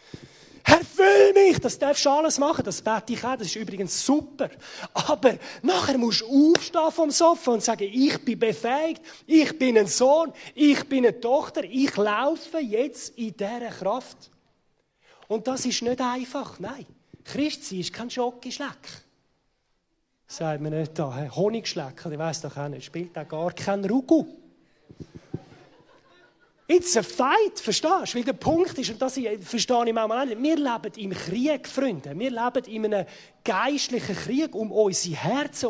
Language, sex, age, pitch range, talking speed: German, male, 30-49, 170-255 Hz, 165 wpm